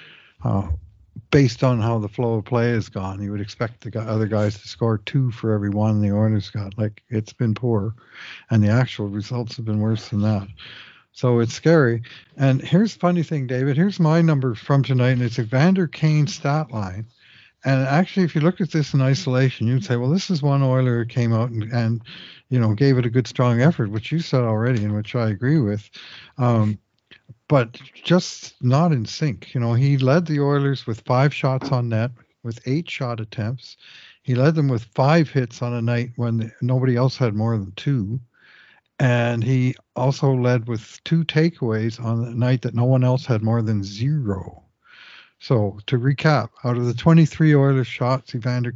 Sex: male